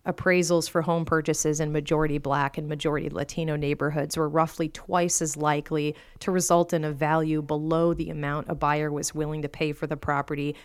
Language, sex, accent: English, female, American